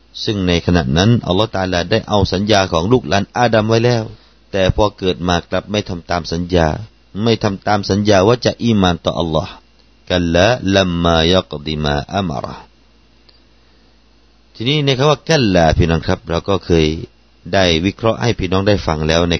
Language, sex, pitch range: Thai, male, 85-115 Hz